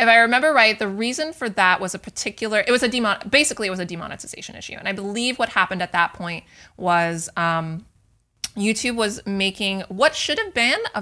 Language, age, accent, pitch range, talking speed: English, 20-39, American, 180-220 Hz, 210 wpm